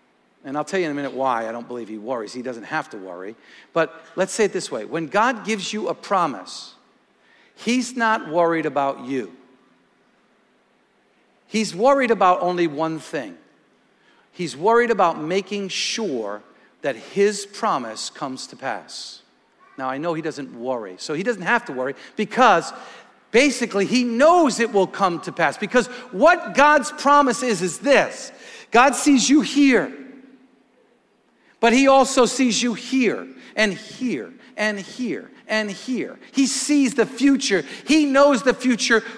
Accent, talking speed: American, 160 wpm